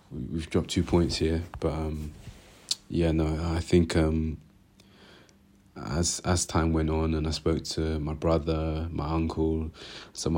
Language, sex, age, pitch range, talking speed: English, male, 30-49, 80-90 Hz, 150 wpm